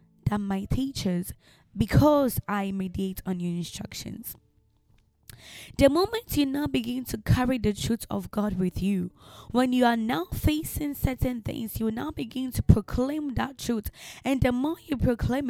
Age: 20-39